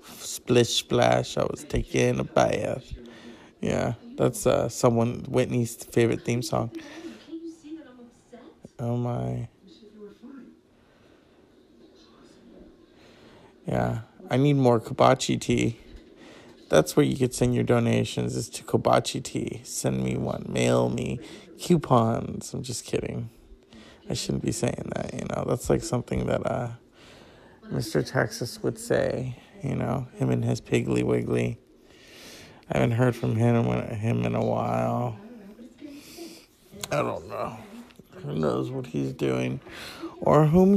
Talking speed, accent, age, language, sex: 125 wpm, American, 20-39, English, male